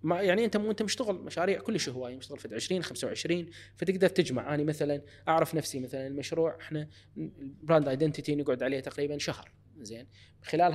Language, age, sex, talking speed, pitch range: Arabic, 20-39, male, 175 wpm, 120-155 Hz